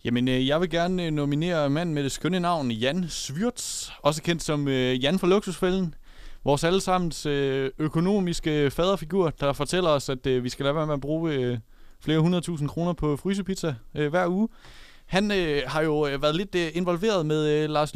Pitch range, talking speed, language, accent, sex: 130-170 Hz, 165 wpm, Danish, native, male